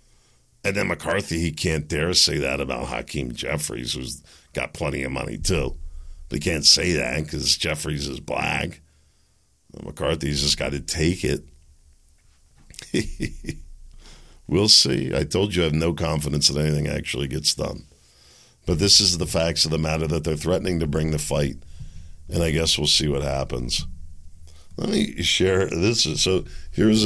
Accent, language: American, English